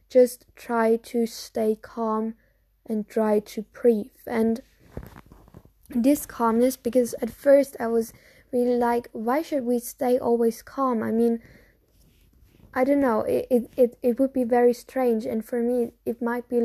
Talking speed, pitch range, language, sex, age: 160 wpm, 220-245 Hz, English, female, 10-29